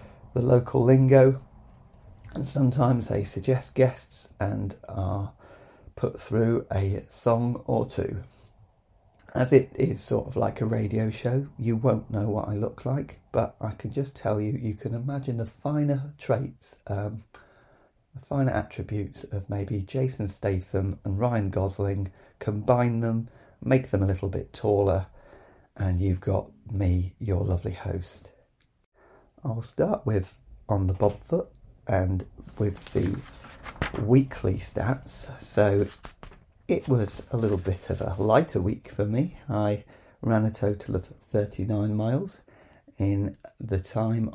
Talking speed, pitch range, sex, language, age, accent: 140 wpm, 100-130 Hz, male, English, 40-59, British